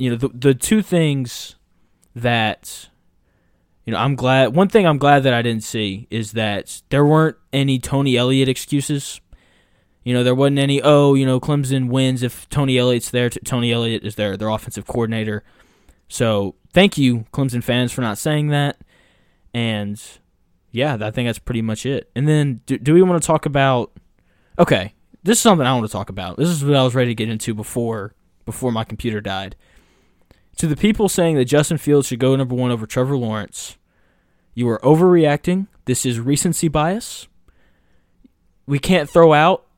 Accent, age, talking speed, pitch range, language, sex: American, 20-39, 185 wpm, 115-145 Hz, English, male